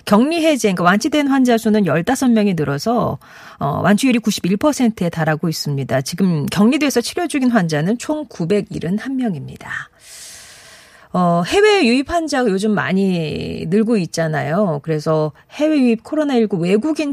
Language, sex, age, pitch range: Korean, female, 40-59, 160-235 Hz